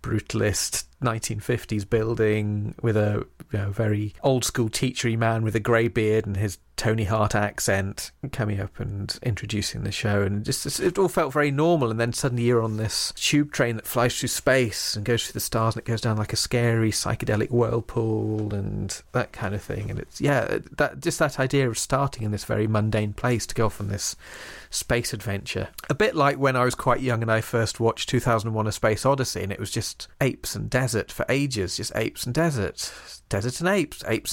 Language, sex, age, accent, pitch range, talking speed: English, male, 40-59, British, 105-140 Hz, 205 wpm